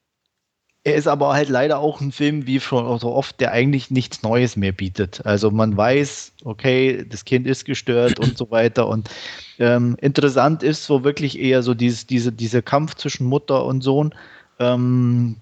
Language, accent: German, German